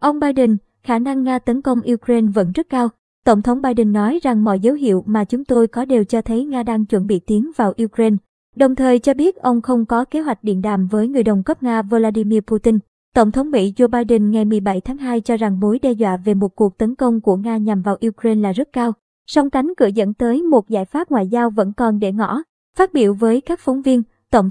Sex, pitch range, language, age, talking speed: male, 215-255 Hz, Vietnamese, 20-39, 240 wpm